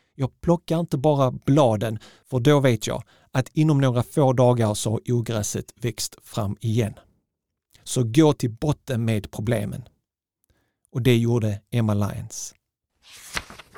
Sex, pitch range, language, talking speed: male, 115-140 Hz, Swedish, 135 wpm